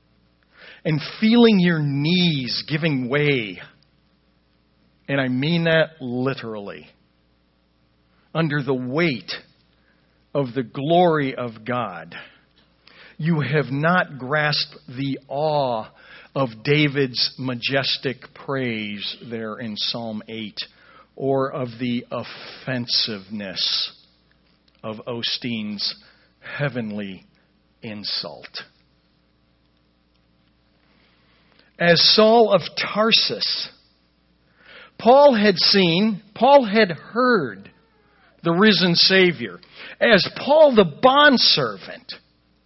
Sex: male